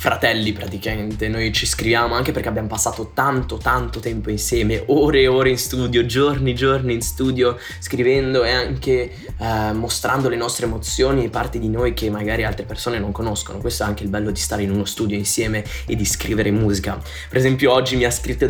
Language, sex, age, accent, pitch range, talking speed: Italian, male, 20-39, native, 110-130 Hz, 200 wpm